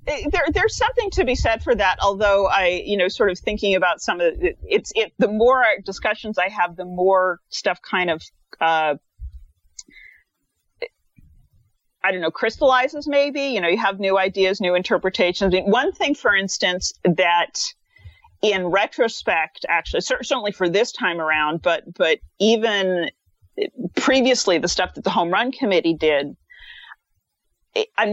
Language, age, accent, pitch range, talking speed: English, 40-59, American, 180-245 Hz, 160 wpm